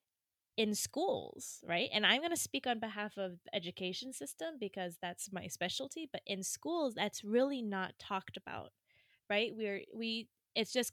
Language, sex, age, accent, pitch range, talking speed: English, female, 20-39, American, 180-225 Hz, 170 wpm